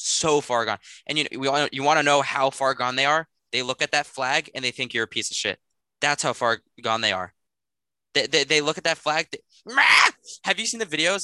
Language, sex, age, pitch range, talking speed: English, male, 20-39, 120-160 Hz, 235 wpm